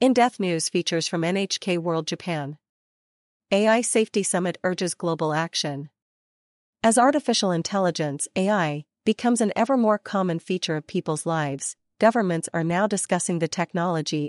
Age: 40-59